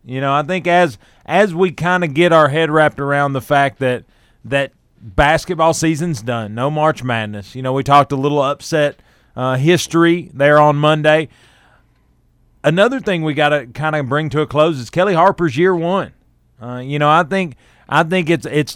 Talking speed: 195 wpm